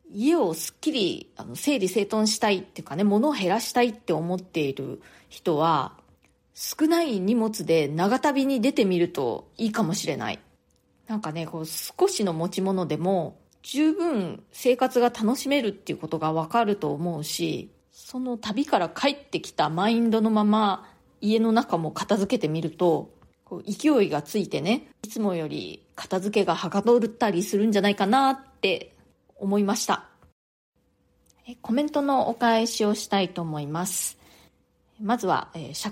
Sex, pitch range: female, 175-235 Hz